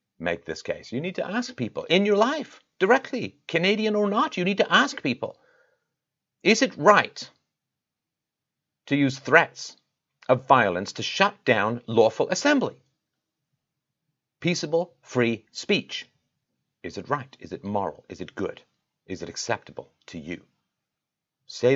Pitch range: 125-170 Hz